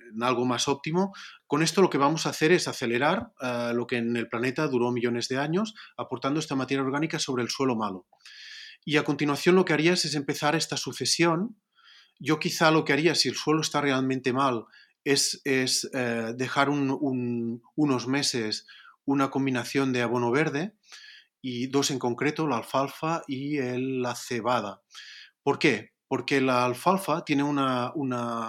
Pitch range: 125-150 Hz